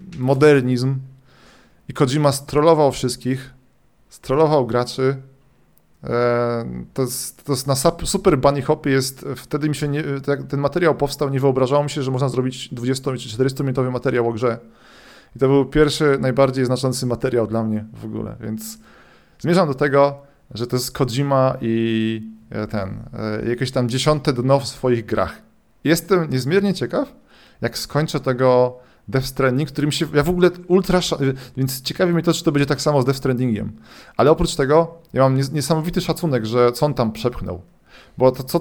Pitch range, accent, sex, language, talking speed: 125-150 Hz, native, male, Polish, 160 wpm